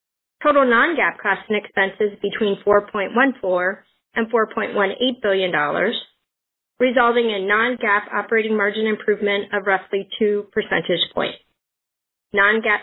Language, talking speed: English, 105 wpm